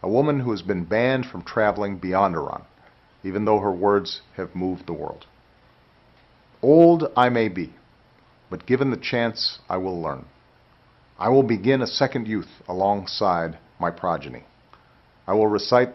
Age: 50-69